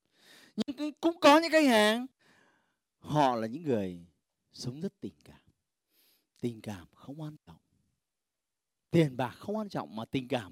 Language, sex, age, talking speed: Vietnamese, male, 30-49, 155 wpm